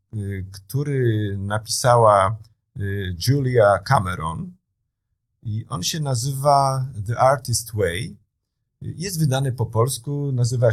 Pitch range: 110-130 Hz